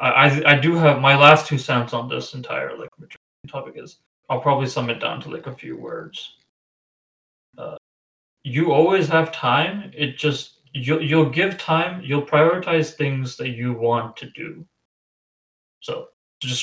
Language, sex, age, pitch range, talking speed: English, male, 20-39, 125-155 Hz, 160 wpm